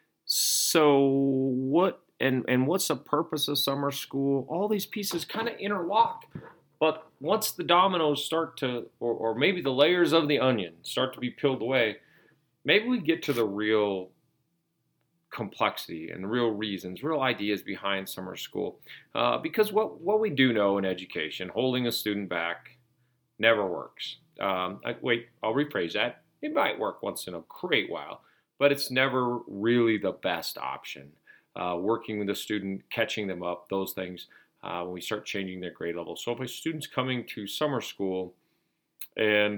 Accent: American